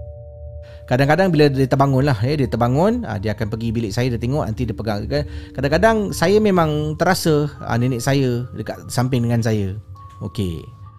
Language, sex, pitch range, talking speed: Malay, male, 105-150 Hz, 155 wpm